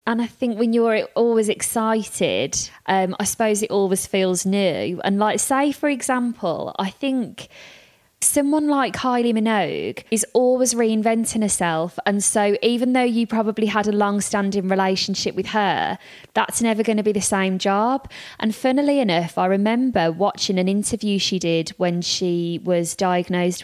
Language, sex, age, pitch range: English, female, 20-39, 185-220 Hz